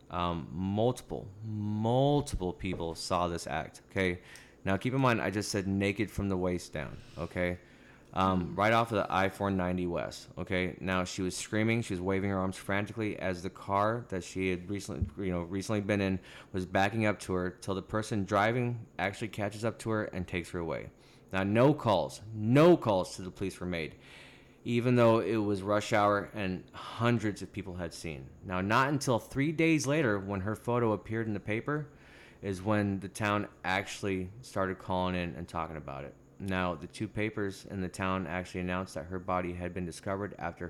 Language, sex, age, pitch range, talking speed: English, male, 20-39, 90-110 Hz, 195 wpm